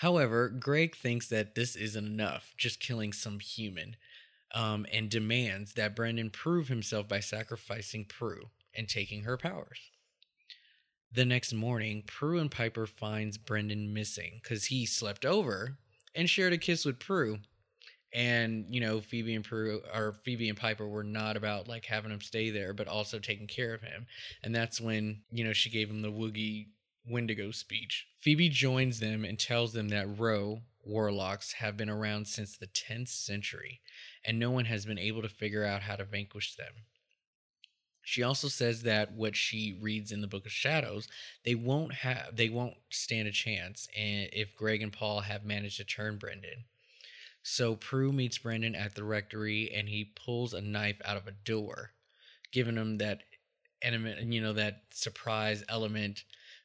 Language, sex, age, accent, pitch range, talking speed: English, male, 20-39, American, 105-120 Hz, 170 wpm